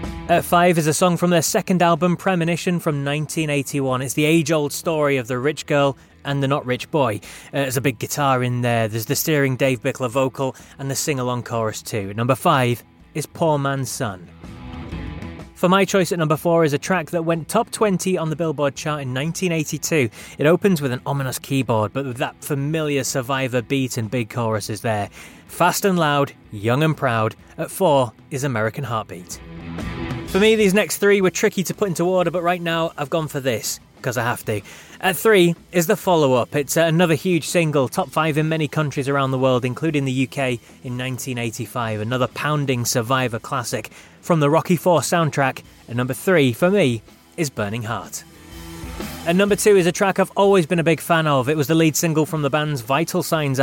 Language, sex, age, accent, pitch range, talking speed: English, male, 20-39, British, 125-165 Hz, 200 wpm